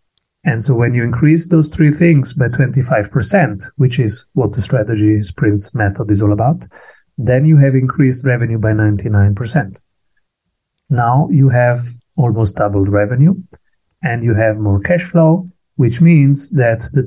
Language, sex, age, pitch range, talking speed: English, male, 30-49, 105-140 Hz, 160 wpm